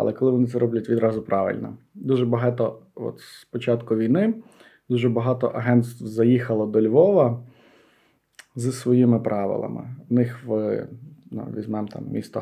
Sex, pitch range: male, 115-140 Hz